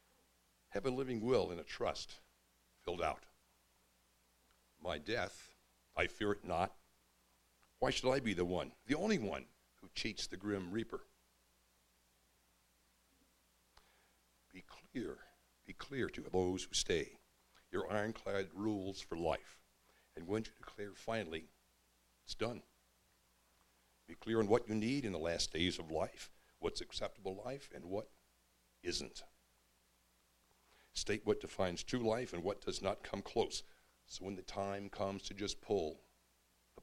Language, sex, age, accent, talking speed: English, male, 60-79, American, 140 wpm